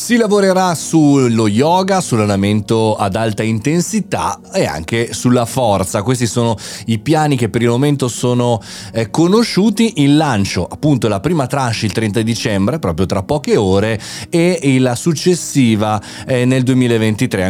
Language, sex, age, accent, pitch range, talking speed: Italian, male, 30-49, native, 105-150 Hz, 135 wpm